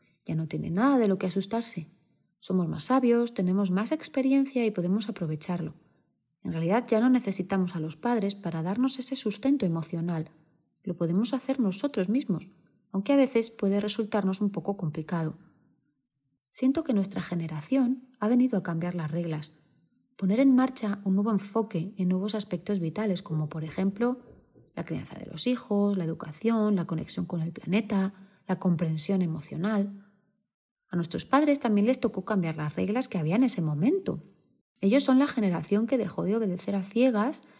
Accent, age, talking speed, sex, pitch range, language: Spanish, 30-49, 170 wpm, female, 170-230 Hz, Spanish